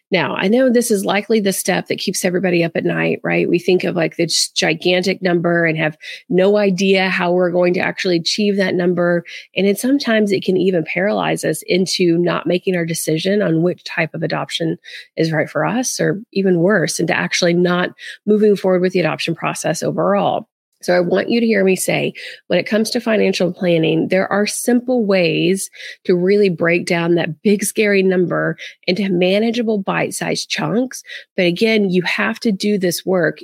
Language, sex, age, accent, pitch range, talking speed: English, female, 30-49, American, 170-205 Hz, 190 wpm